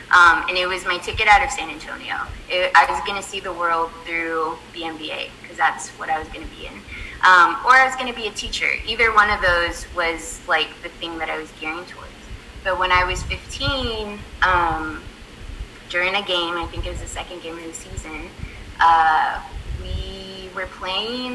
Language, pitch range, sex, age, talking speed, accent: English, 165-195 Hz, female, 20-39, 210 wpm, American